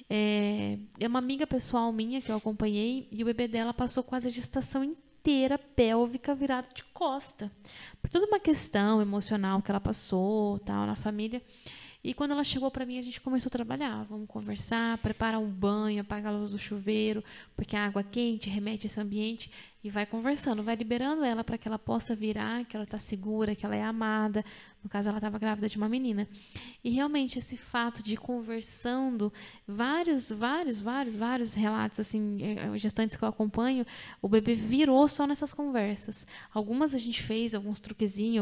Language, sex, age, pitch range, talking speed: Portuguese, female, 10-29, 210-250 Hz, 180 wpm